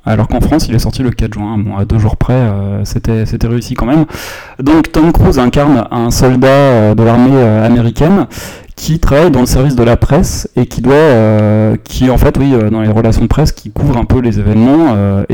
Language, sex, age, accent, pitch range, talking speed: French, male, 20-39, French, 110-135 Hz, 235 wpm